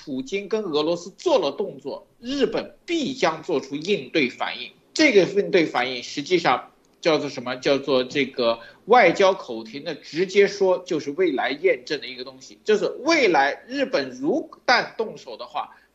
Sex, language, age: male, Chinese, 50-69